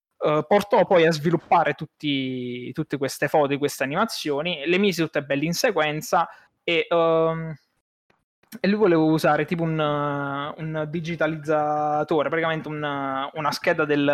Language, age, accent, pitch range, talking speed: Italian, 20-39, native, 145-170 Hz, 135 wpm